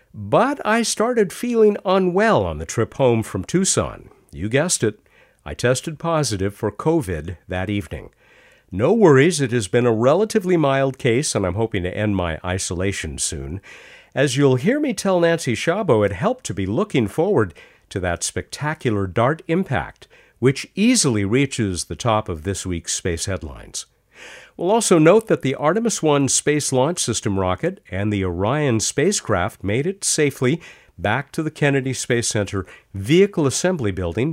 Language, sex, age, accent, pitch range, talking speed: English, male, 50-69, American, 100-150 Hz, 160 wpm